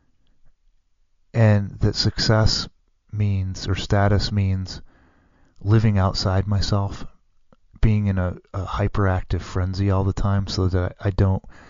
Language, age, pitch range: English, 30-49, 90-105 Hz